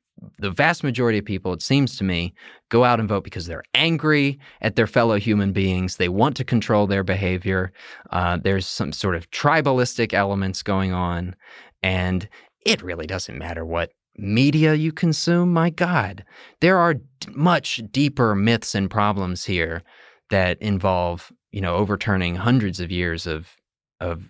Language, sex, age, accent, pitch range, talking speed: English, male, 20-39, American, 95-120 Hz, 165 wpm